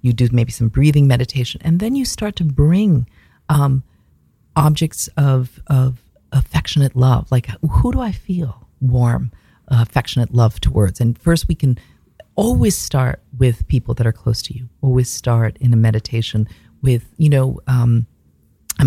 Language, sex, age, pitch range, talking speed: English, female, 40-59, 120-145 Hz, 160 wpm